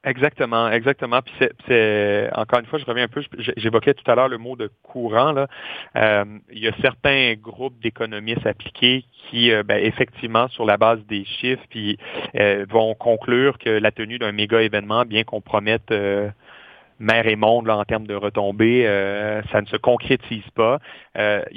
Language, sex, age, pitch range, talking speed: French, male, 30-49, 105-125 Hz, 190 wpm